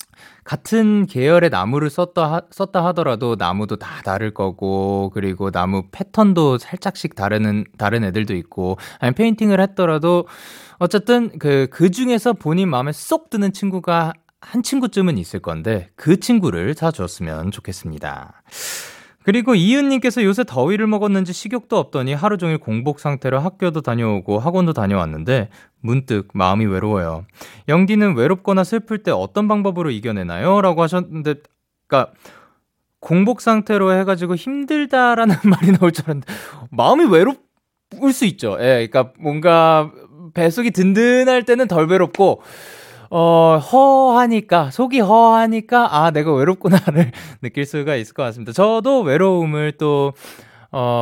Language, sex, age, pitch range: Korean, male, 20-39, 120-200 Hz